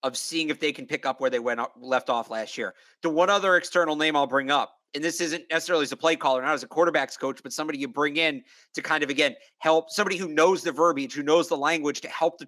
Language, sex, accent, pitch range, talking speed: English, male, American, 145-180 Hz, 275 wpm